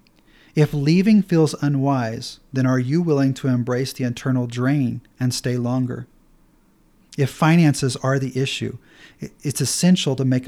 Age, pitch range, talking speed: 40-59, 125-145 Hz, 145 wpm